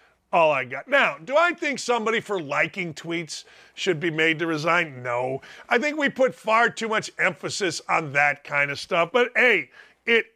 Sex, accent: male, American